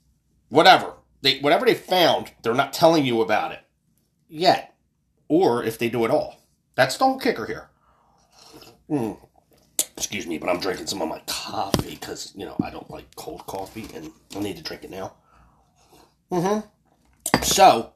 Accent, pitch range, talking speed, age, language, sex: American, 110-155 Hz, 165 wpm, 30-49, English, male